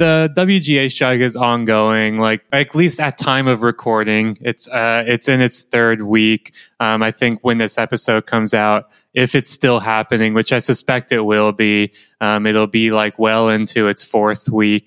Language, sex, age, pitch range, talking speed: English, male, 20-39, 110-130 Hz, 185 wpm